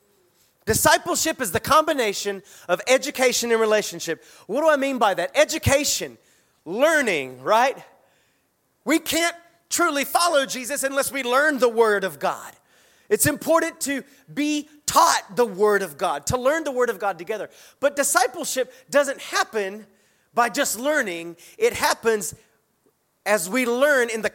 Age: 30-49